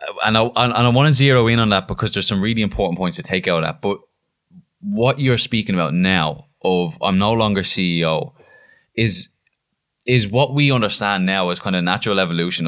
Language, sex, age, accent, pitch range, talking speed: English, male, 20-39, Irish, 95-125 Hz, 205 wpm